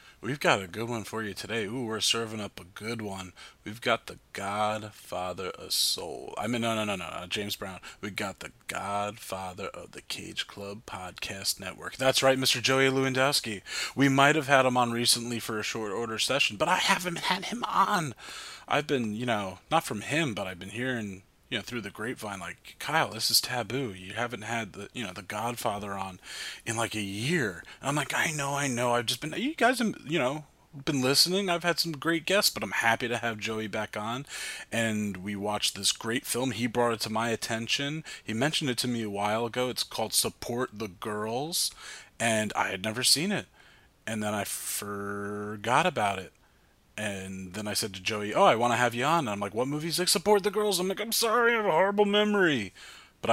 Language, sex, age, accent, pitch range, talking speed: English, male, 30-49, American, 105-135 Hz, 220 wpm